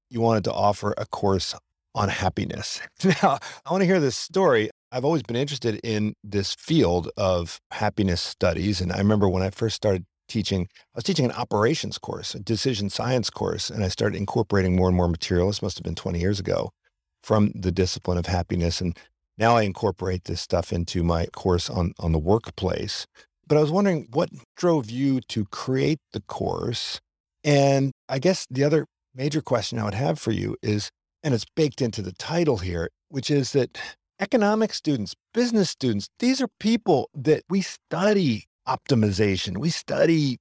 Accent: American